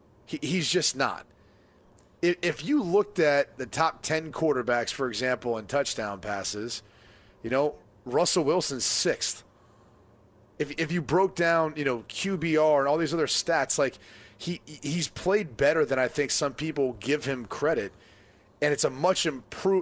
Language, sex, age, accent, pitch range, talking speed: English, male, 30-49, American, 125-170 Hz, 150 wpm